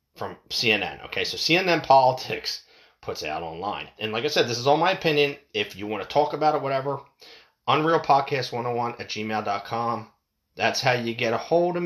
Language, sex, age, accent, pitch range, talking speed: English, male, 30-49, American, 110-160 Hz, 185 wpm